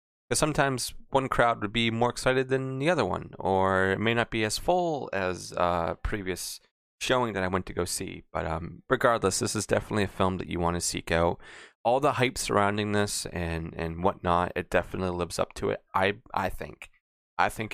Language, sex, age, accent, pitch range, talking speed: English, male, 20-39, American, 85-110 Hz, 210 wpm